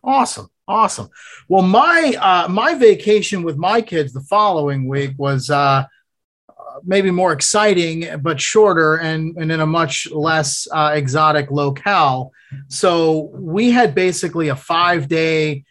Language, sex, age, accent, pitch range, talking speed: English, male, 30-49, American, 150-185 Hz, 135 wpm